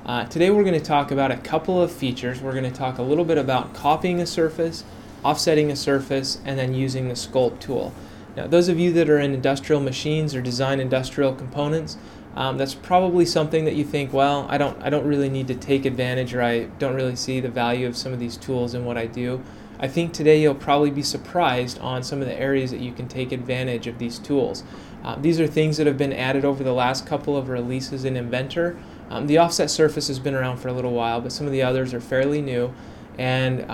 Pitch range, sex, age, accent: 125-155 Hz, male, 20-39, American